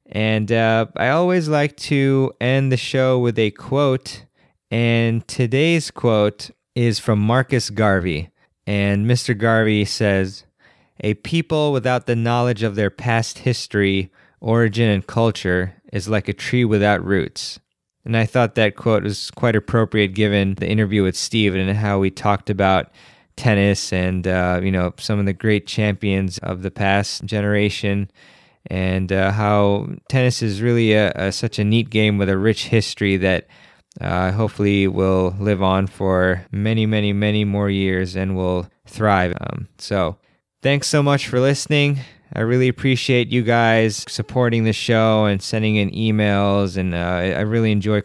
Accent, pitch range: American, 100-115 Hz